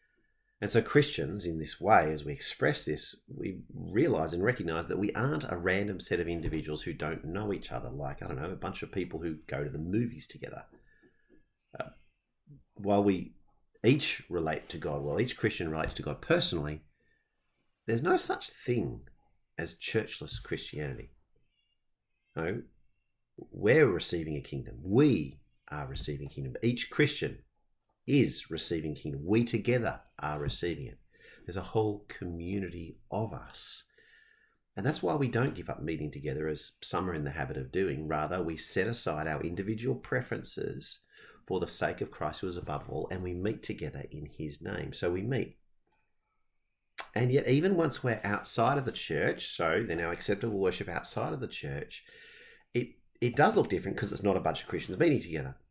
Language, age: English, 40-59